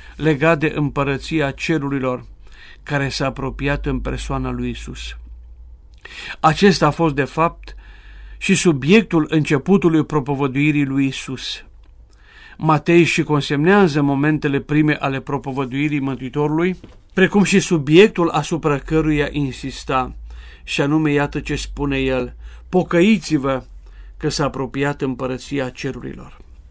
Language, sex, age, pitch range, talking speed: Romanian, male, 50-69, 130-155 Hz, 110 wpm